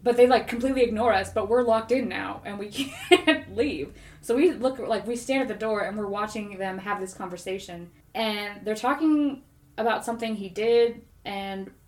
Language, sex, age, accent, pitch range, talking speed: English, female, 20-39, American, 195-240 Hz, 195 wpm